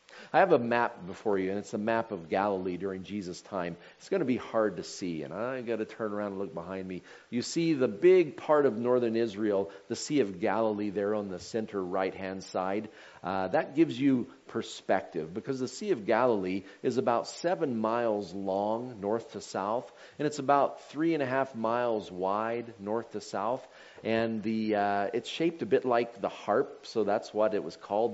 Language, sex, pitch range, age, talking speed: English, male, 100-125 Hz, 40-59, 205 wpm